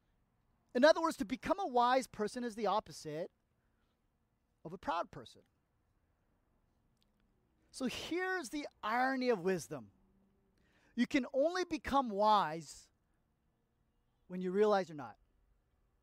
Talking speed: 115 wpm